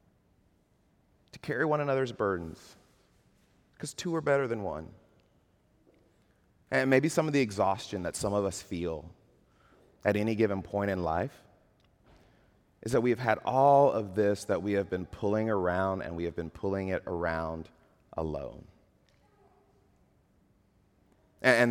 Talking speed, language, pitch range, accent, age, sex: 140 wpm, English, 95-110 Hz, American, 30-49, male